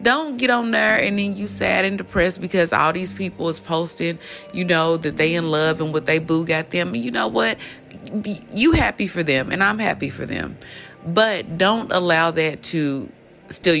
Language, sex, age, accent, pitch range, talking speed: English, female, 30-49, American, 140-185 Hz, 200 wpm